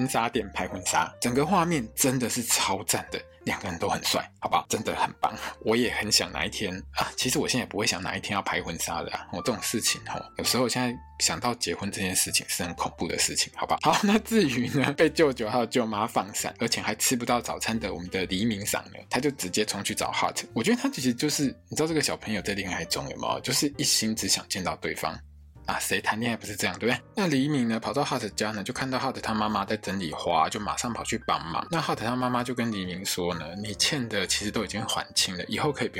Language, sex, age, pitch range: Chinese, male, 20-39, 100-130 Hz